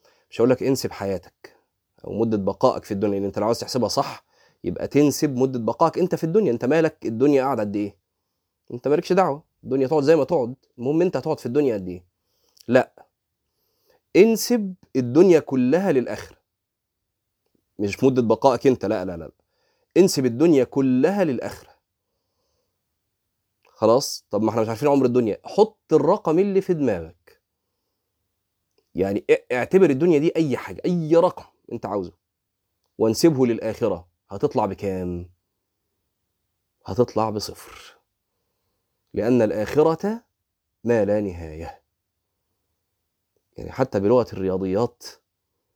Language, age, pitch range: Arabic, 30-49, 100-150 Hz